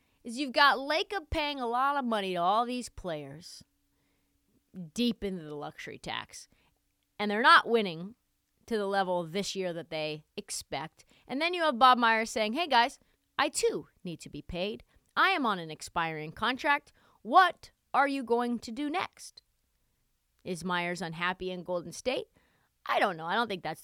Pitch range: 180-275 Hz